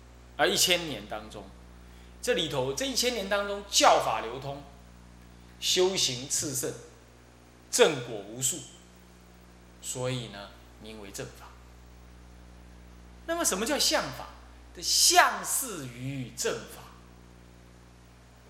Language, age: Chinese, 20-39